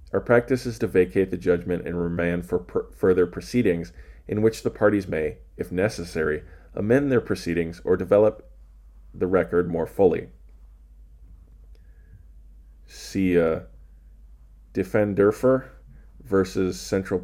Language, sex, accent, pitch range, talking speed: English, male, American, 80-95 Hz, 120 wpm